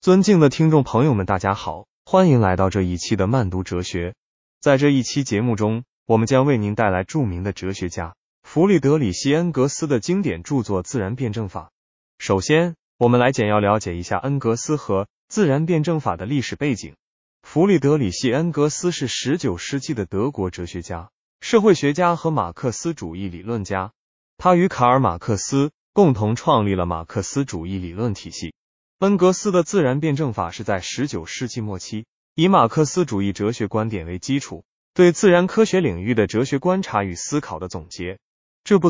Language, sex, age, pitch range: Chinese, male, 20-39, 95-150 Hz